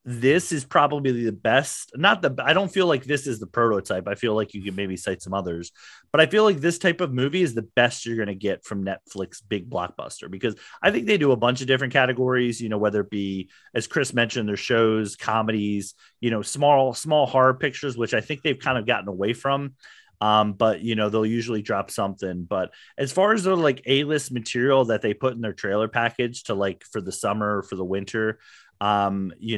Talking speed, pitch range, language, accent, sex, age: 225 wpm, 105-130 Hz, English, American, male, 30-49